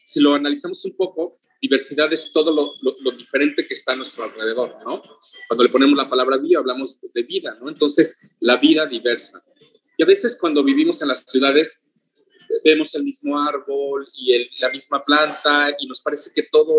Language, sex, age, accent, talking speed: Spanish, male, 40-59, Mexican, 195 wpm